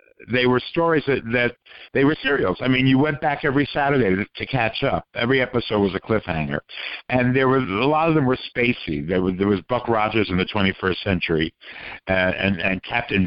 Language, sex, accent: English, male, American